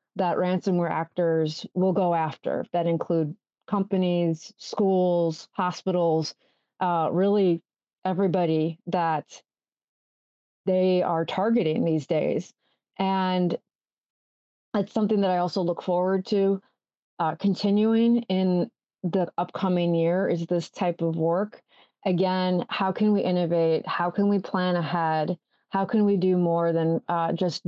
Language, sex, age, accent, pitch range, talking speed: English, female, 30-49, American, 170-190 Hz, 125 wpm